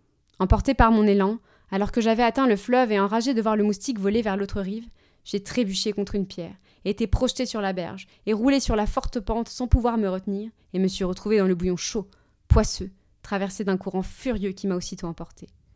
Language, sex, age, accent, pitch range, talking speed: French, female, 20-39, French, 195-230 Hz, 215 wpm